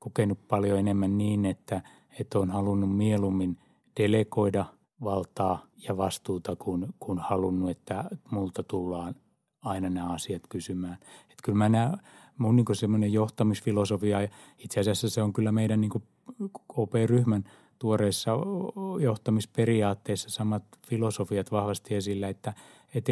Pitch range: 100-115 Hz